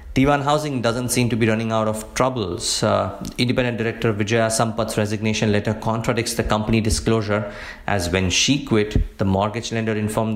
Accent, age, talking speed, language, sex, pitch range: Indian, 50-69, 170 wpm, English, male, 105-120 Hz